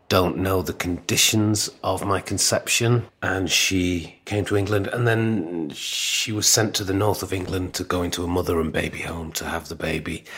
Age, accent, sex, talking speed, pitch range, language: 40-59, British, male, 195 wpm, 85-110 Hz, English